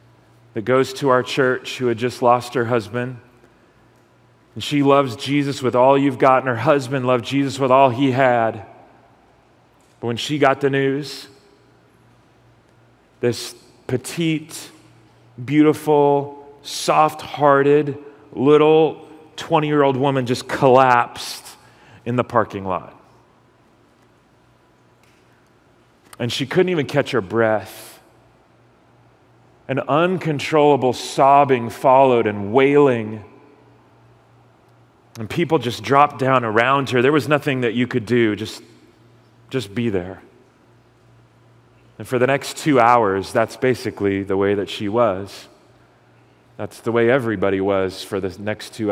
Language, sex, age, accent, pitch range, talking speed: English, male, 40-59, American, 115-140 Hz, 125 wpm